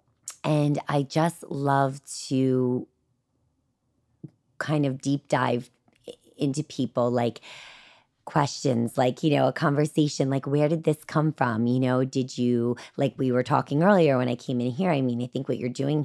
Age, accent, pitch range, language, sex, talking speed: 30-49, American, 120-140 Hz, English, female, 170 wpm